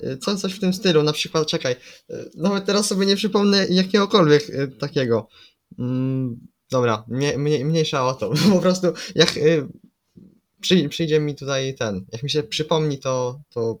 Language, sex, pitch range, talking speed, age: Polish, male, 115-155 Hz, 135 wpm, 20-39